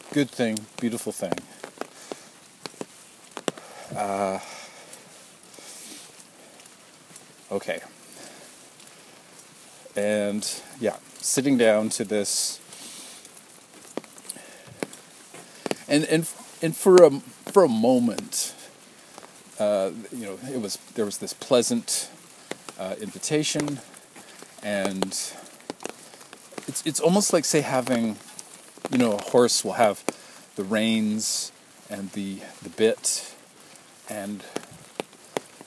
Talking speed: 85 wpm